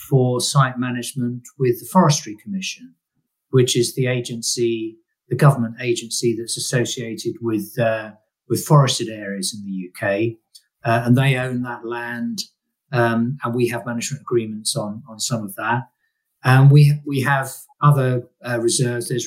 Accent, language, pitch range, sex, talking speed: British, English, 115-140 Hz, male, 150 wpm